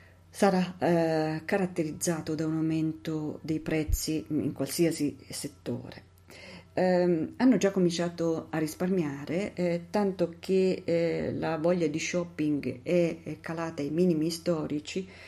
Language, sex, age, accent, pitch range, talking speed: Italian, female, 40-59, native, 150-175 Hz, 120 wpm